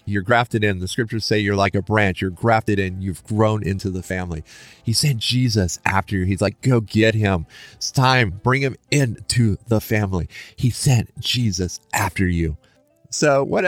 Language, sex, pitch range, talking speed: English, male, 95-120 Hz, 185 wpm